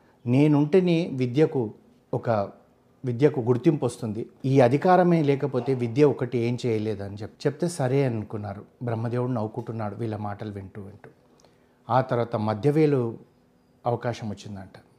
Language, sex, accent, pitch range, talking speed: Telugu, male, native, 115-145 Hz, 110 wpm